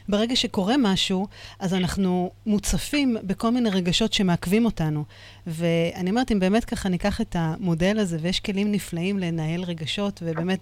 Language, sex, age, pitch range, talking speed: Hebrew, female, 30-49, 170-220 Hz, 145 wpm